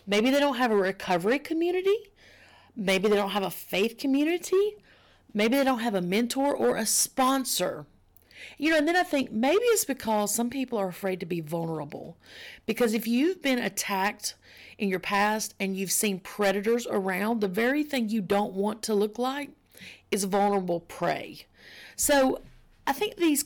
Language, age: English, 40-59